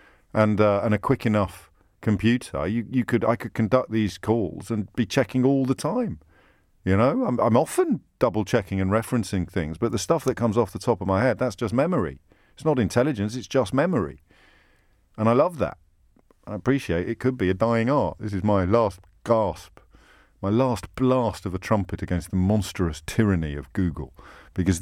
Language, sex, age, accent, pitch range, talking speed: English, male, 50-69, British, 85-120 Hz, 195 wpm